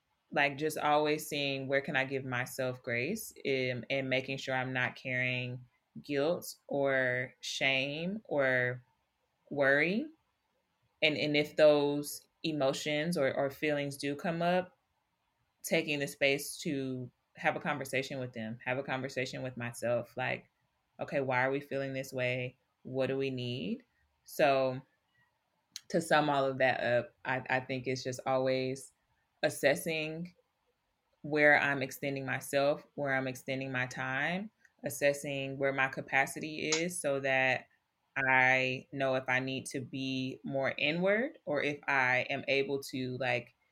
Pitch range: 130-145 Hz